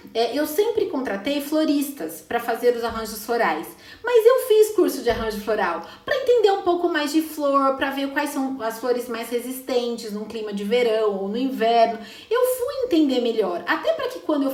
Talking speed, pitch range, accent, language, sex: 200 wpm, 230-320 Hz, Brazilian, Portuguese, female